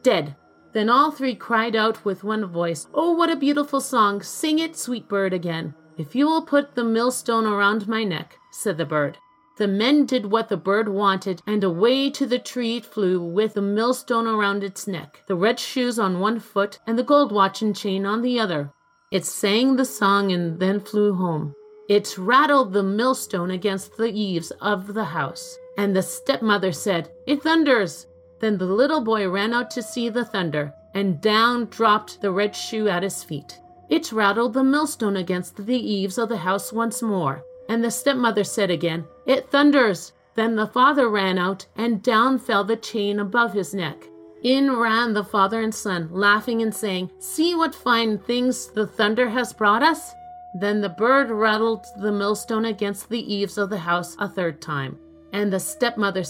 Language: English